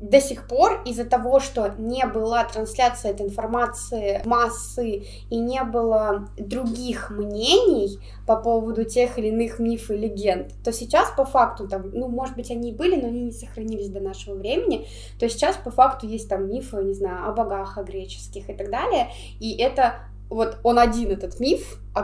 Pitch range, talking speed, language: 205-250 Hz, 180 wpm, Russian